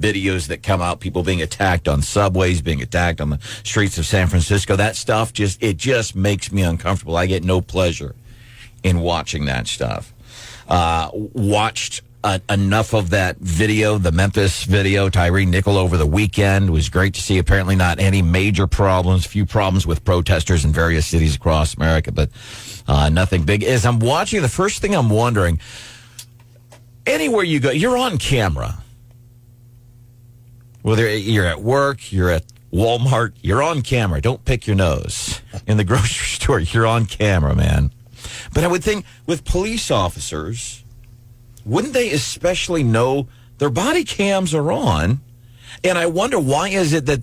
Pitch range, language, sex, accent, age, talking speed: 95-120 Hz, English, male, American, 50-69, 165 wpm